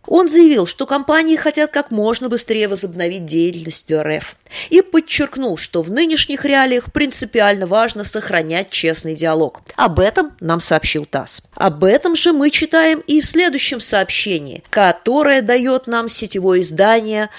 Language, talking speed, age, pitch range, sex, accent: Russian, 140 wpm, 20-39, 175-280 Hz, female, native